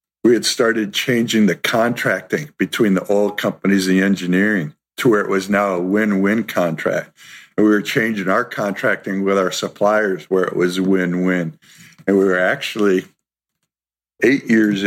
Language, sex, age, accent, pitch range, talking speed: English, male, 50-69, American, 100-125 Hz, 170 wpm